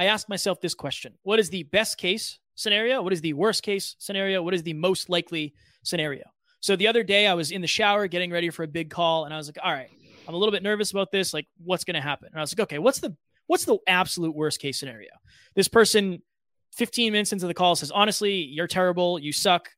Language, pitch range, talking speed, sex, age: English, 160-205 Hz, 250 wpm, male, 20-39